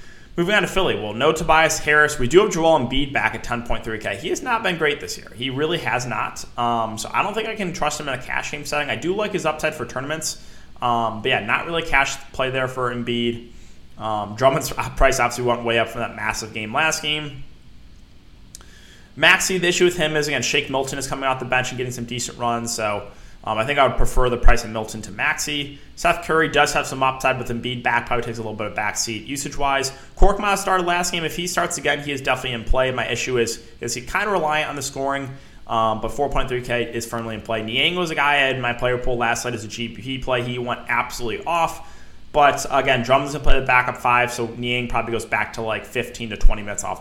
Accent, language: American, English